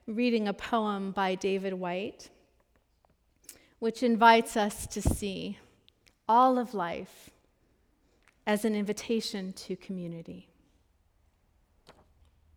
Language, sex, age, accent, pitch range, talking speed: English, female, 40-59, American, 180-235 Hz, 90 wpm